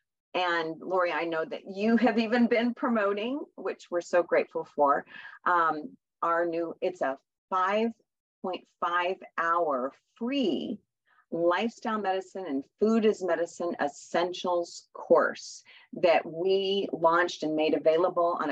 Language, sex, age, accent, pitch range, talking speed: English, female, 40-59, American, 165-210 Hz, 125 wpm